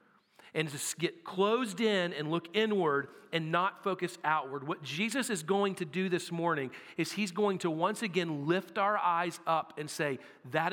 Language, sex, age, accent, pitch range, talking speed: English, male, 40-59, American, 155-200 Hz, 185 wpm